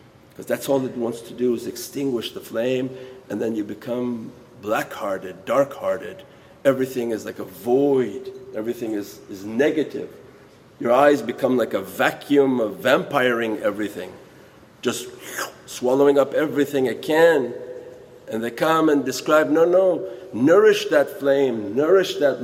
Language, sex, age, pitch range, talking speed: English, male, 50-69, 120-160 Hz, 140 wpm